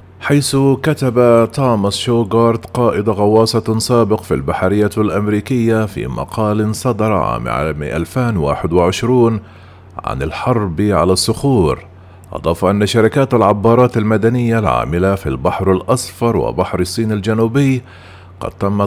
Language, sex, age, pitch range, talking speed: Arabic, male, 40-59, 95-115 Hz, 105 wpm